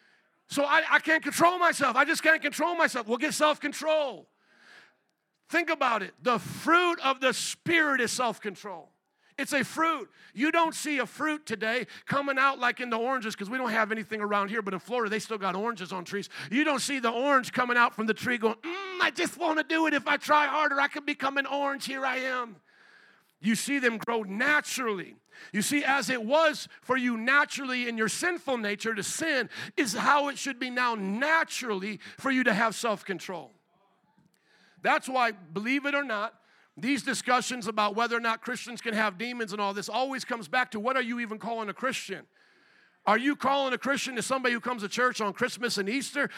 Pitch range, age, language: 225-285 Hz, 50-69, English